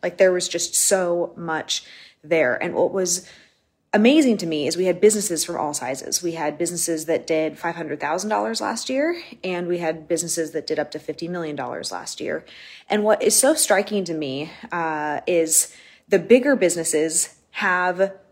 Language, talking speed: English, 175 wpm